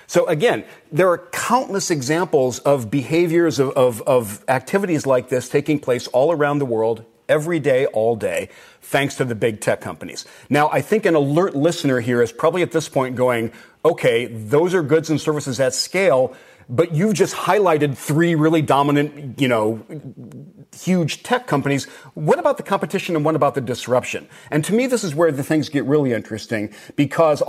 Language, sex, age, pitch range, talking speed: English, male, 40-59, 125-165 Hz, 180 wpm